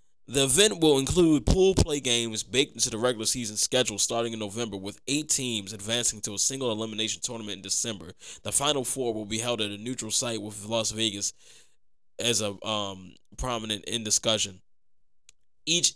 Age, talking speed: 20-39, 175 wpm